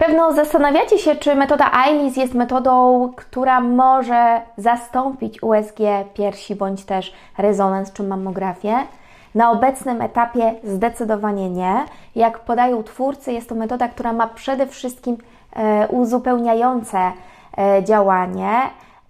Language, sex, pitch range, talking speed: Polish, female, 210-255 Hz, 110 wpm